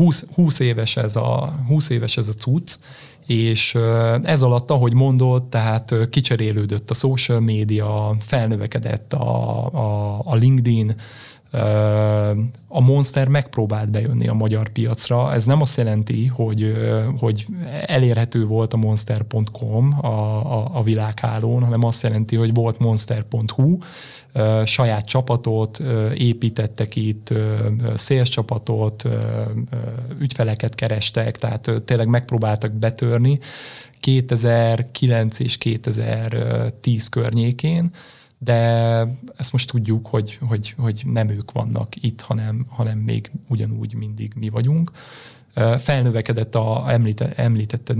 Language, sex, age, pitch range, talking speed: Hungarian, male, 20-39, 110-130 Hz, 110 wpm